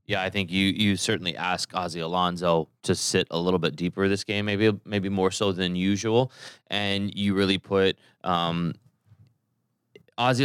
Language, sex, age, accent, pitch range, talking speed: English, male, 20-39, American, 85-100 Hz, 165 wpm